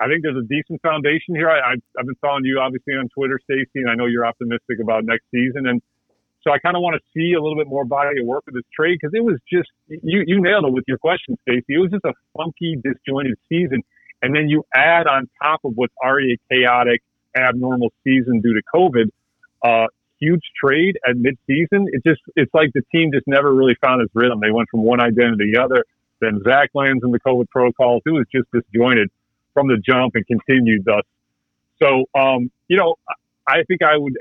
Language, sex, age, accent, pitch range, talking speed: English, male, 40-59, American, 120-150 Hz, 230 wpm